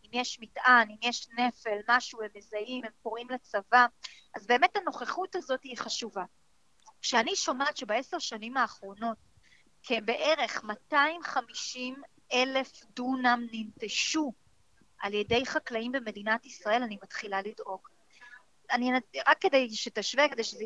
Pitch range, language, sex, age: 220-280 Hz, Hebrew, female, 30-49